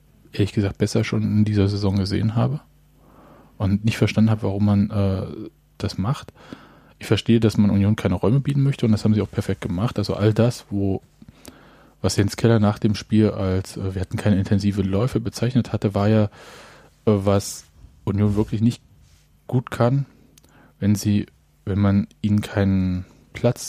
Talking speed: 175 wpm